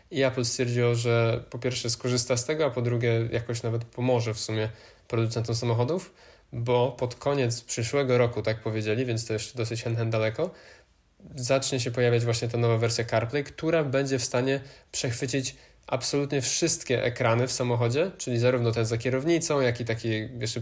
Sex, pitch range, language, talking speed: male, 120-140 Hz, Polish, 170 wpm